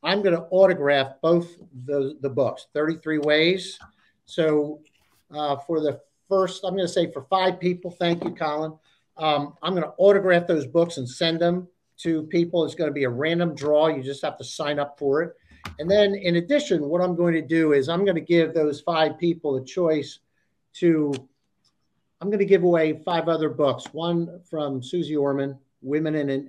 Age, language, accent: 50-69, English, American